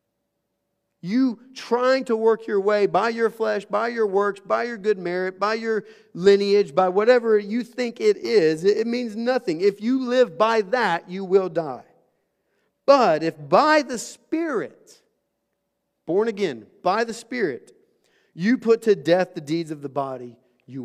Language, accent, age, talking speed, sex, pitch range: English, American, 40-59, 160 wpm, male, 155-225 Hz